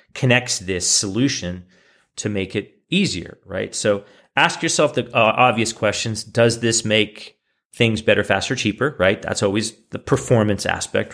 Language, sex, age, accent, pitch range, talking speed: English, male, 40-59, American, 105-135 Hz, 150 wpm